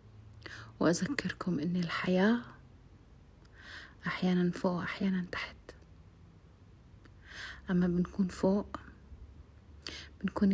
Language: Arabic